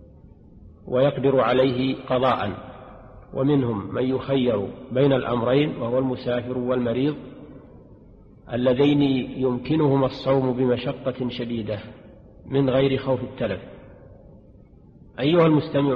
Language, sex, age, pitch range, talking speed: Arabic, male, 40-59, 120-130 Hz, 85 wpm